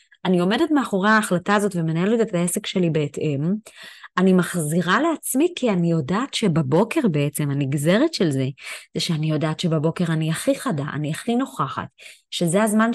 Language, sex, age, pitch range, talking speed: Hebrew, female, 20-39, 170-230 Hz, 155 wpm